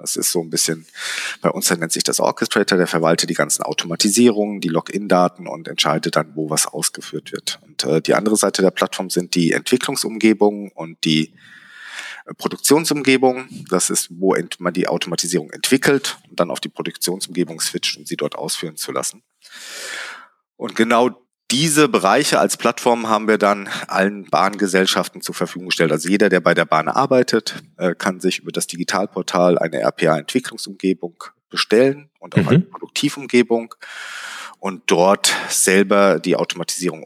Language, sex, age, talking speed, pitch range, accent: German, male, 40-59, 155 wpm, 90-120 Hz, German